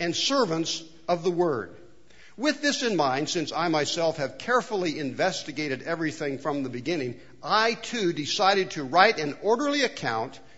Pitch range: 145-195 Hz